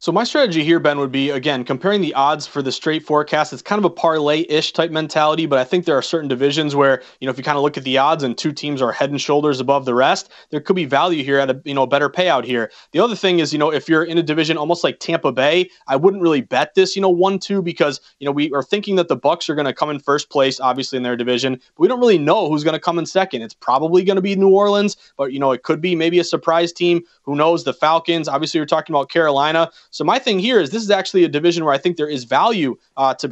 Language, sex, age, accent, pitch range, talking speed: English, male, 30-49, American, 140-180 Hz, 290 wpm